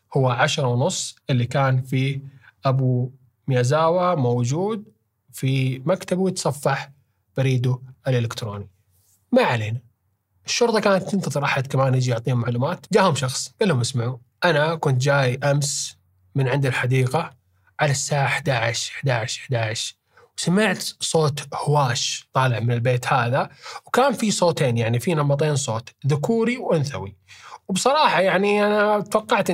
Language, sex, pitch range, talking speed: Arabic, male, 125-155 Hz, 125 wpm